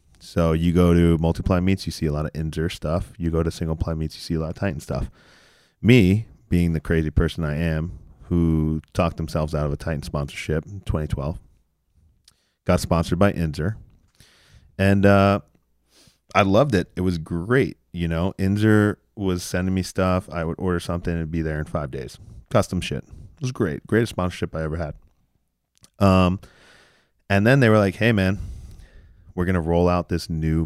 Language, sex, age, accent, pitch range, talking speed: English, male, 30-49, American, 80-95 Hz, 190 wpm